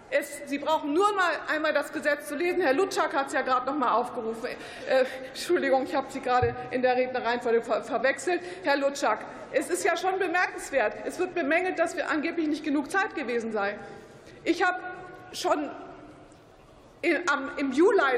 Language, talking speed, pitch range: German, 170 wpm, 285-365 Hz